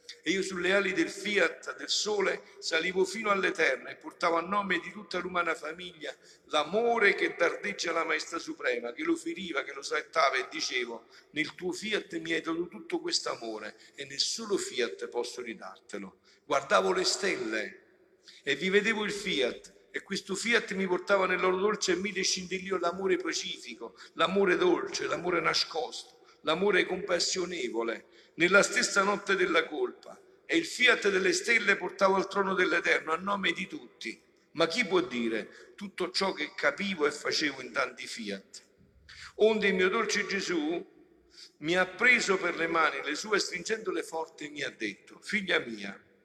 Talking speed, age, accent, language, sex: 165 wpm, 50-69, native, Italian, male